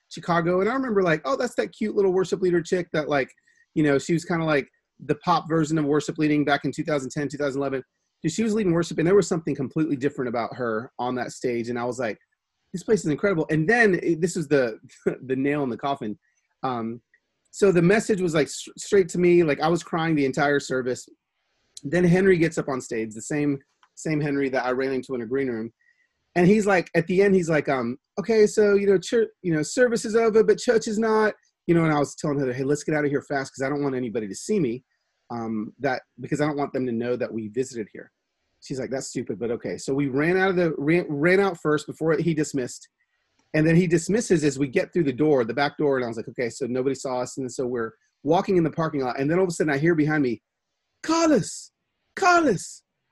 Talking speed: 245 wpm